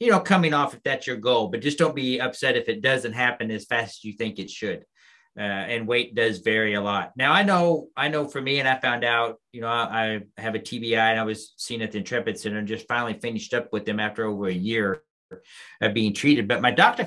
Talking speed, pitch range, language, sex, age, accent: 255 wpm, 115-155 Hz, English, male, 40-59, American